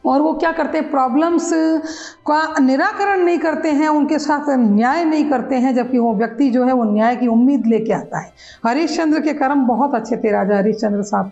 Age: 40-59